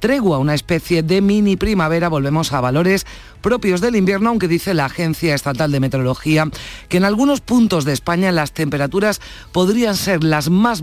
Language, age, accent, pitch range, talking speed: Spanish, 40-59, Spanish, 135-185 Hz, 170 wpm